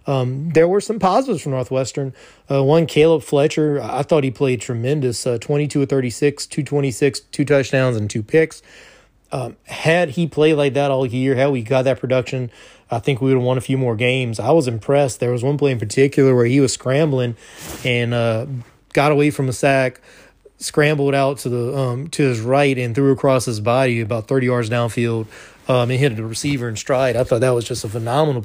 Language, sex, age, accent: English, male, 30-49, American